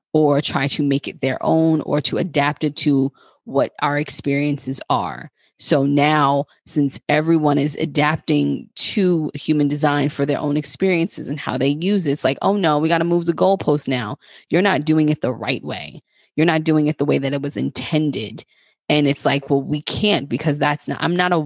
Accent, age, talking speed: American, 20-39, 205 wpm